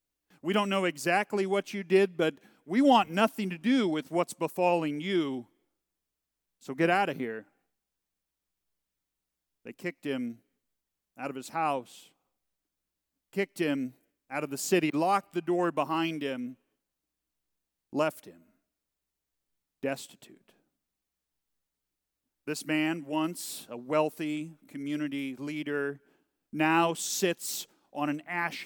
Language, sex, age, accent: English, male, 40-59, American